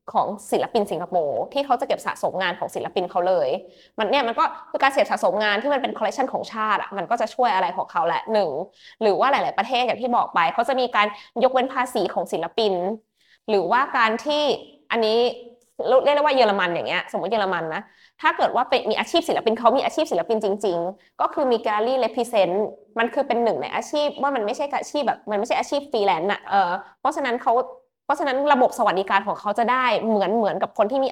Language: Thai